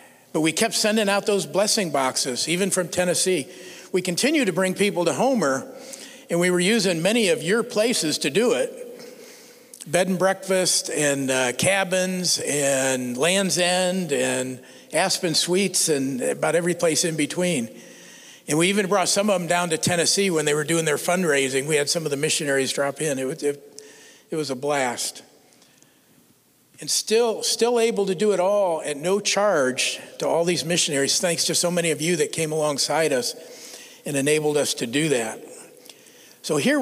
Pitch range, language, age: 150-205 Hz, English, 60-79